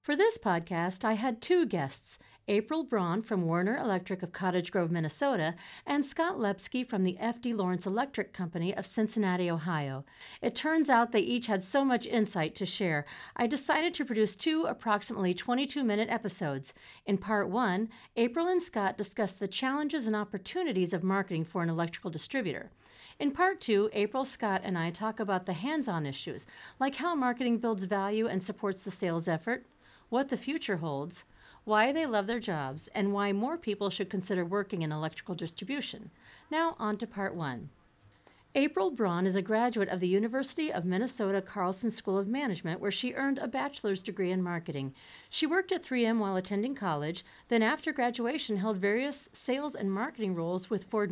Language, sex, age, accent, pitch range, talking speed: English, female, 50-69, American, 180-245 Hz, 175 wpm